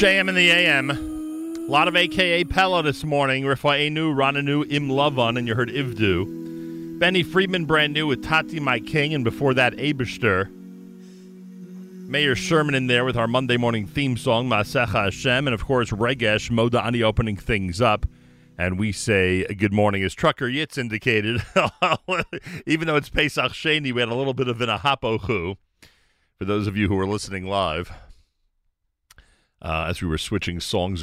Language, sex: English, male